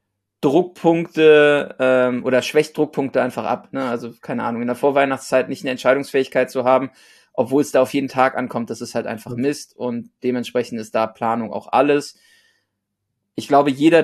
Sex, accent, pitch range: male, German, 125-150 Hz